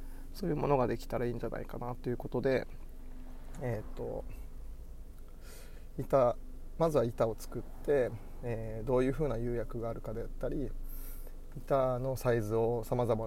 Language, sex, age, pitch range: Japanese, male, 20-39, 110-130 Hz